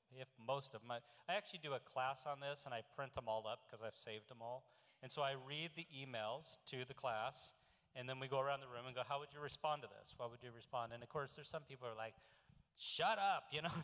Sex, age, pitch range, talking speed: male, 40-59, 120-155 Hz, 275 wpm